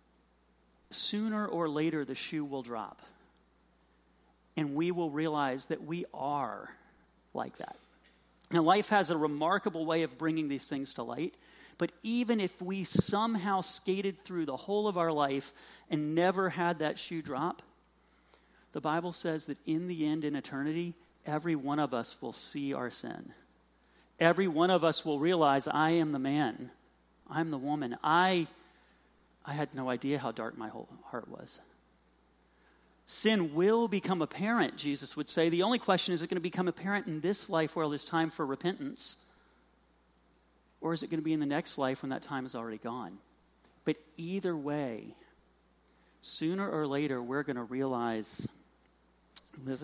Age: 40-59